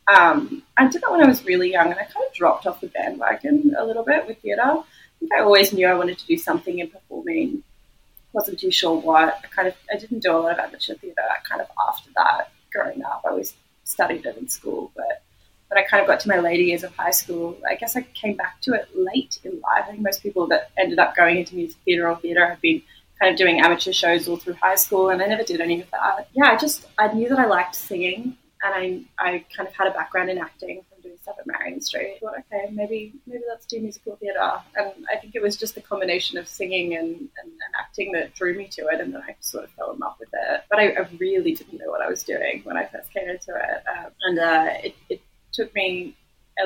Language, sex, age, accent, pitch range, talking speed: English, female, 20-39, Australian, 180-290 Hz, 260 wpm